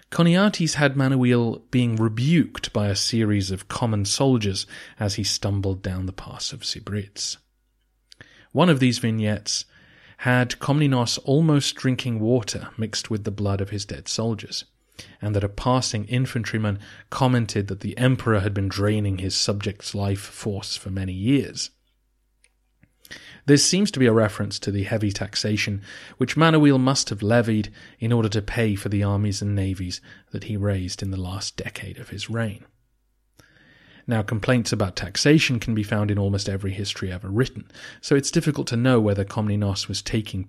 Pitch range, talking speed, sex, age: 100-125 Hz, 165 wpm, male, 30-49